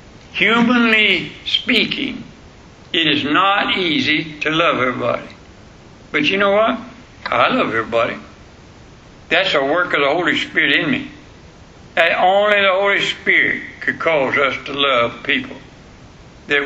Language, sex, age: English, male, 60-79